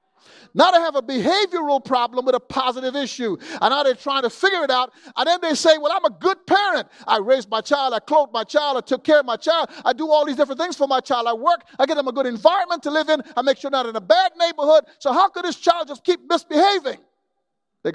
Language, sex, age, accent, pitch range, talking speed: English, male, 50-69, American, 240-310 Hz, 265 wpm